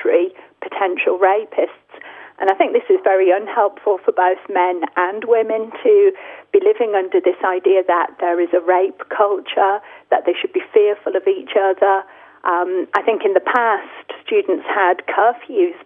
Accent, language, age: British, English, 40-59